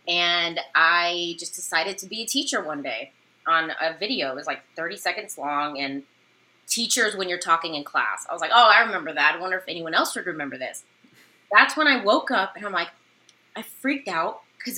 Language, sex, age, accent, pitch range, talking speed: English, female, 20-39, American, 175-245 Hz, 215 wpm